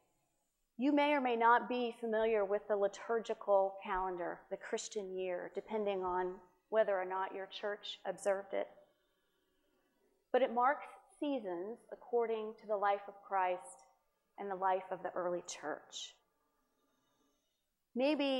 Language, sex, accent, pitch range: English, female, American, 195-250 Hz